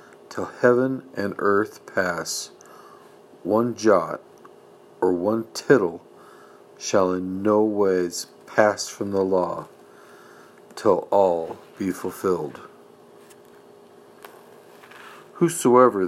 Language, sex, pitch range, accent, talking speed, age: English, male, 95-120 Hz, American, 85 wpm, 50-69